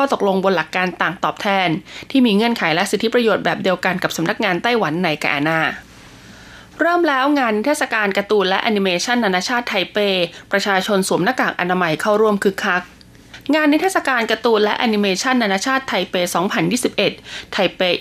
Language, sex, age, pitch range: Thai, female, 20-39, 190-240 Hz